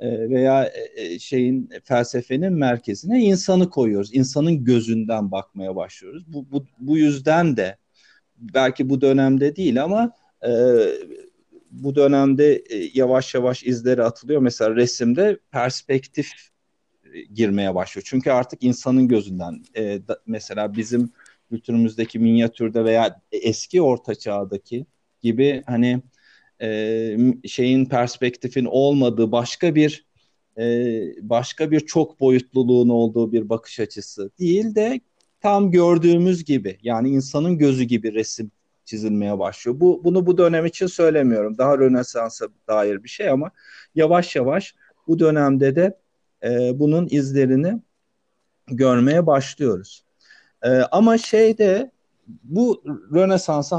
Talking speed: 110 wpm